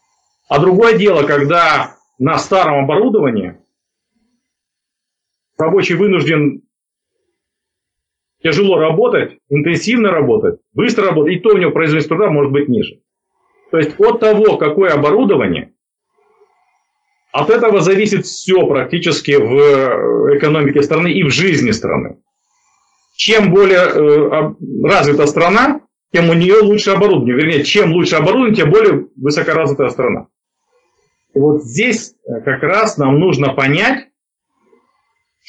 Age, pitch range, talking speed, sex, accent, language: 40-59, 150-240 Hz, 115 wpm, male, native, Russian